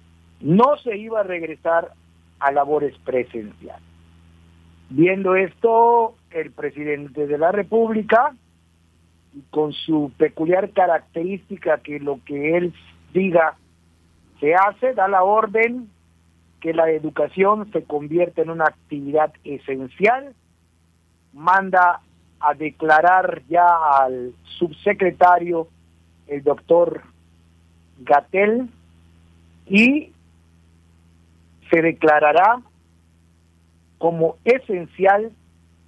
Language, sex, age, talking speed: Spanish, male, 50-69, 85 wpm